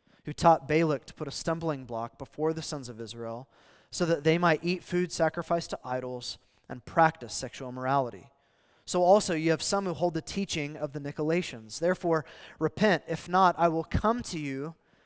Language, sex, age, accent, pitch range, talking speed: English, male, 20-39, American, 150-190 Hz, 185 wpm